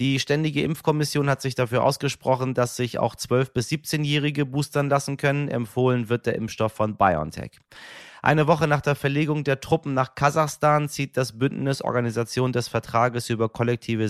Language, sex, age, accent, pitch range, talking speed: German, male, 30-49, German, 110-135 Hz, 165 wpm